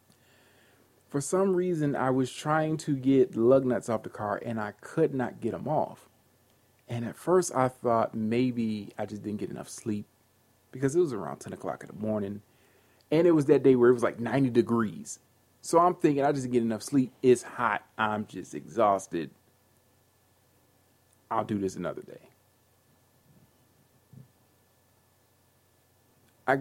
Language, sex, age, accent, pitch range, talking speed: English, male, 40-59, American, 115-155 Hz, 160 wpm